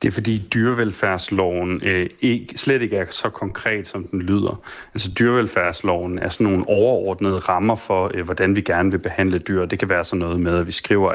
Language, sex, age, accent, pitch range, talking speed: Danish, male, 30-49, native, 95-110 Hz, 205 wpm